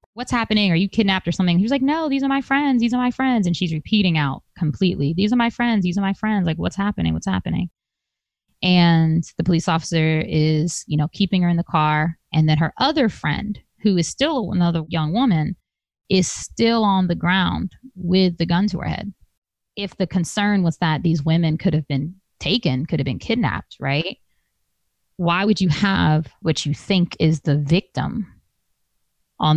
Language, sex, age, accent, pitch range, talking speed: English, female, 20-39, American, 155-195 Hz, 200 wpm